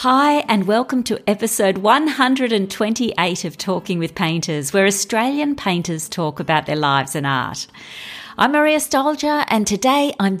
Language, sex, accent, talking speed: English, female, Australian, 145 wpm